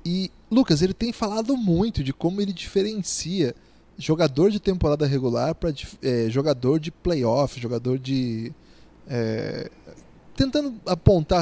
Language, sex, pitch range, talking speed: Portuguese, male, 145-215 Hz, 125 wpm